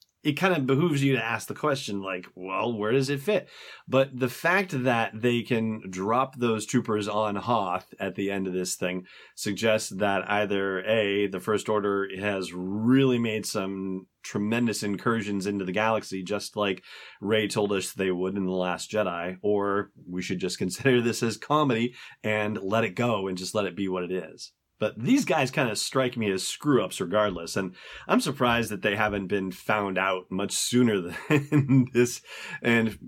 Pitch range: 95-120 Hz